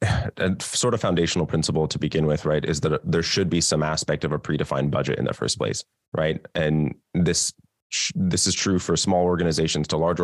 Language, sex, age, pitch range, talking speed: English, male, 20-39, 75-90 Hz, 205 wpm